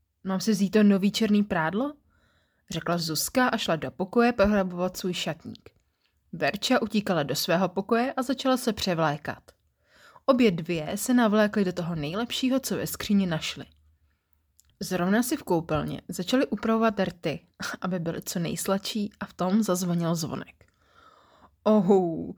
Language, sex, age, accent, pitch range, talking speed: Czech, female, 20-39, native, 155-215 Hz, 135 wpm